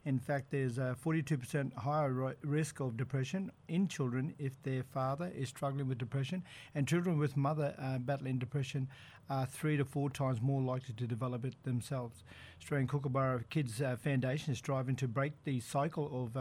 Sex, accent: male, Australian